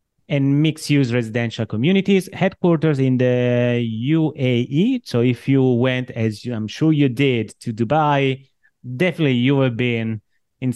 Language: English